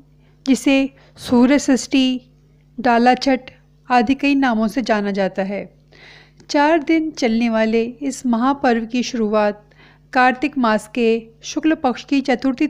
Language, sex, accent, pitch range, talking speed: Hindi, female, native, 235-275 Hz, 130 wpm